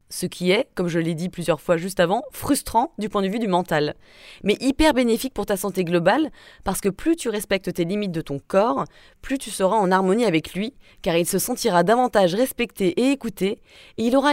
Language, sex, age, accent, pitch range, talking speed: French, female, 20-39, French, 185-245 Hz, 220 wpm